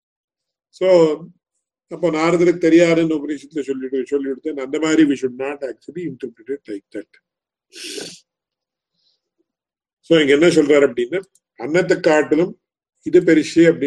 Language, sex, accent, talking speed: English, male, Indian, 95 wpm